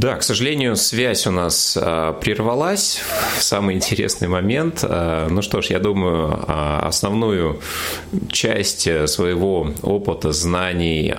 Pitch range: 80-105 Hz